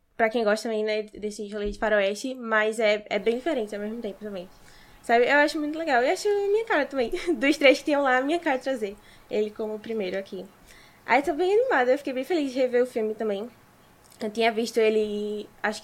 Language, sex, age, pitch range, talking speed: Portuguese, female, 10-29, 210-245 Hz, 240 wpm